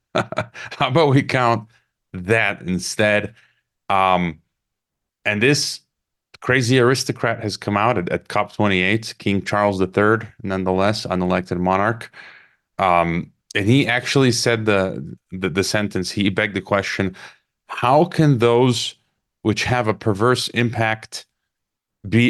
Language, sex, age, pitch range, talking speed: English, male, 30-49, 95-120 Hz, 120 wpm